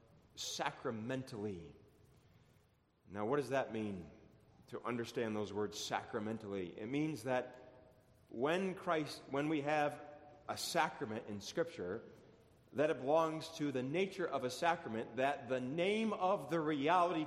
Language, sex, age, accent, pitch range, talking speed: English, male, 40-59, American, 110-155 Hz, 130 wpm